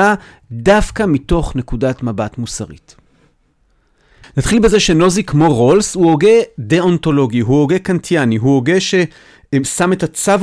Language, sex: Hebrew, male